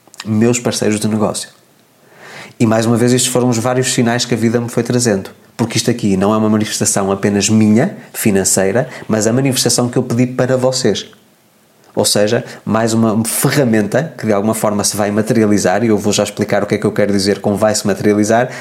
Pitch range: 105-125 Hz